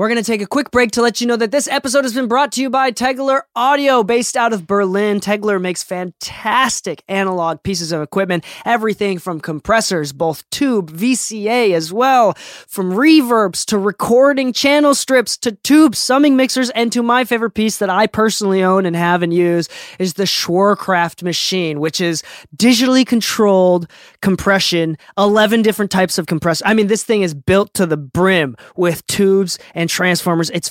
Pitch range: 180-230 Hz